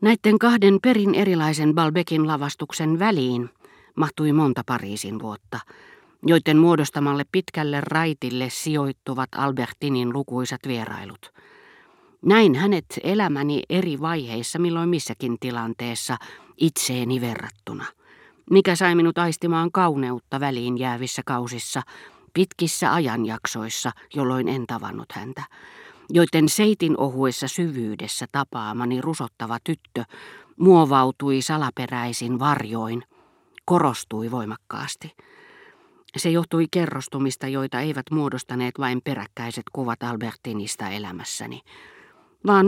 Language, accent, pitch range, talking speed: Finnish, native, 125-170 Hz, 95 wpm